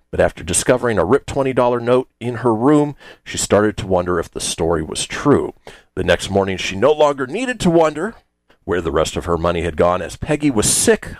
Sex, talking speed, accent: male, 215 wpm, American